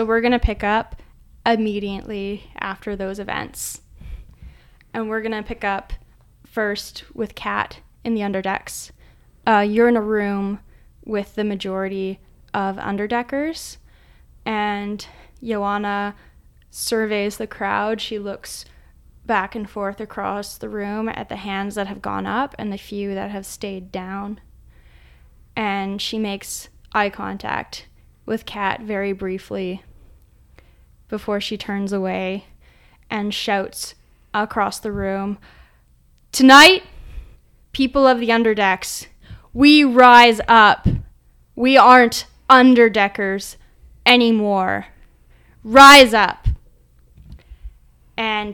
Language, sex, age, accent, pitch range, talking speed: English, female, 10-29, American, 195-220 Hz, 115 wpm